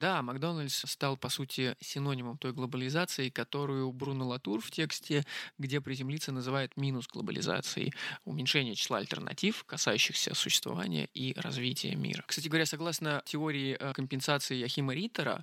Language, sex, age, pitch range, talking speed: Russian, male, 20-39, 130-165 Hz, 125 wpm